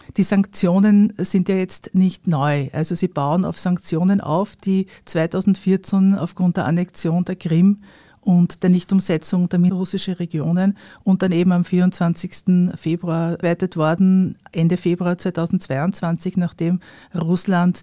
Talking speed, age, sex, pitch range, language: 130 wpm, 50-69, female, 165-190 Hz, German